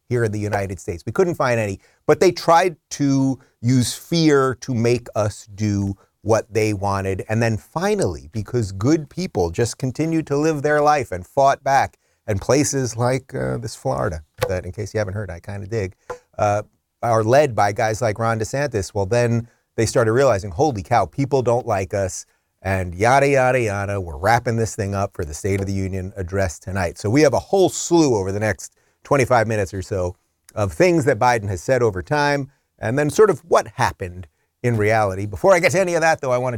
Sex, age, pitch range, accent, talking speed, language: male, 30-49, 105-140 Hz, American, 210 wpm, English